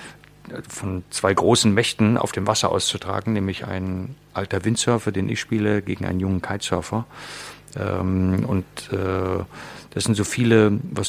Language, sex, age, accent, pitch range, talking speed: German, male, 40-59, German, 95-115 Hz, 135 wpm